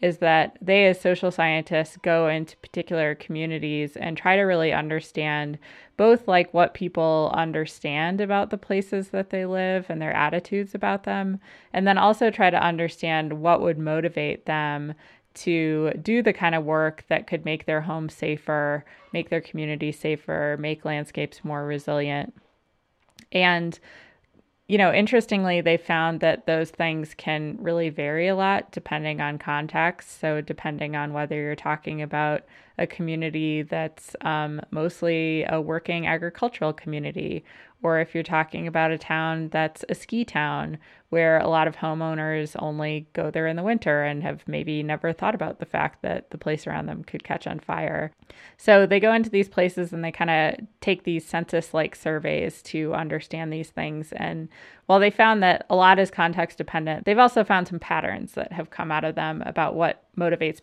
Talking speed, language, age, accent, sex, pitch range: 170 wpm, English, 20-39, American, female, 155-180 Hz